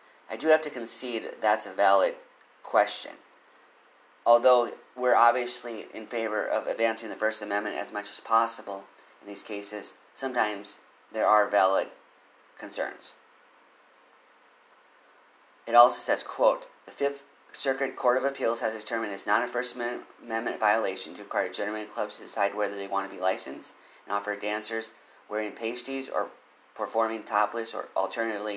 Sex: male